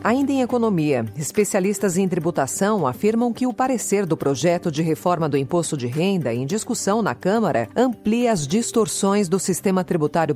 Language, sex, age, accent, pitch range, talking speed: Portuguese, female, 40-59, Brazilian, 155-220 Hz, 160 wpm